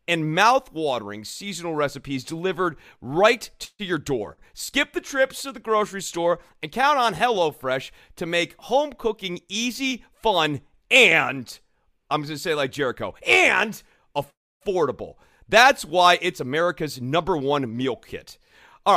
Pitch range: 150-215 Hz